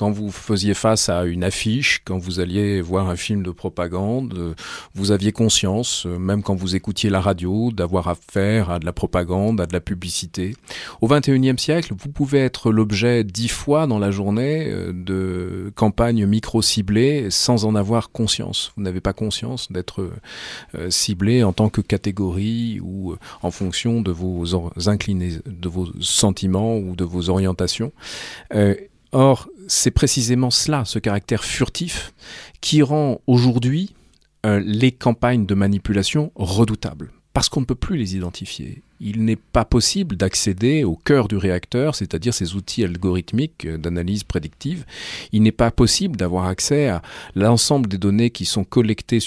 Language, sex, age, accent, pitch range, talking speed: French, male, 40-59, French, 95-120 Hz, 155 wpm